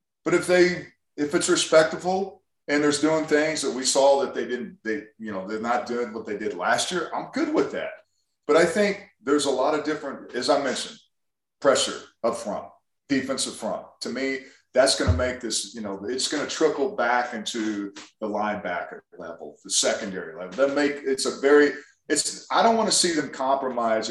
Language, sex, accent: English, male, American